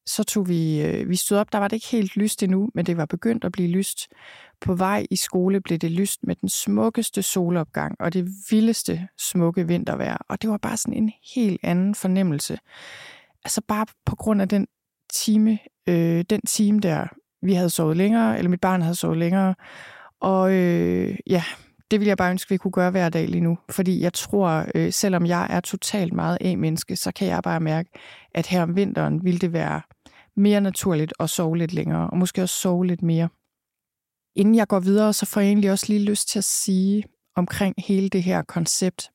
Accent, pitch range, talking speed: native, 175-205 Hz, 210 wpm